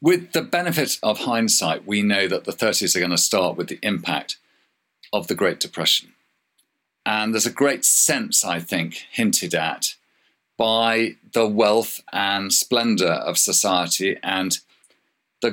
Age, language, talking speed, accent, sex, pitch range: 50-69, English, 150 wpm, British, male, 105-170 Hz